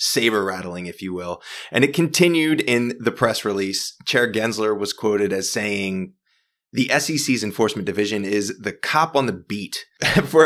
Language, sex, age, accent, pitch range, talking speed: English, male, 20-39, American, 100-130 Hz, 160 wpm